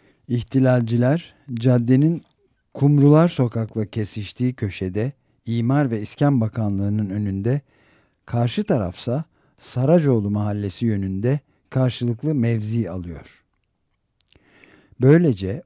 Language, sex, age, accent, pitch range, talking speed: Turkish, male, 60-79, native, 100-125 Hz, 75 wpm